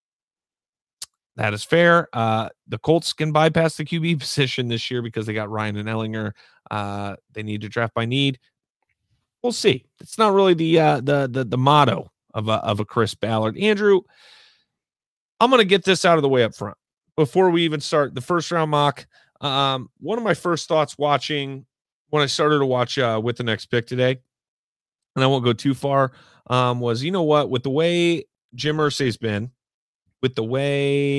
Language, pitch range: English, 115-155 Hz